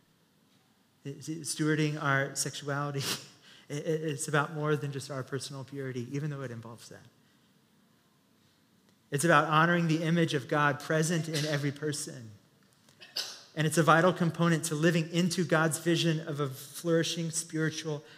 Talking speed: 135 wpm